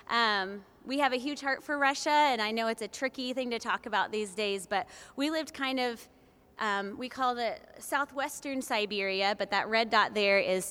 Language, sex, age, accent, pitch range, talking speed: English, female, 20-39, American, 200-245 Hz, 205 wpm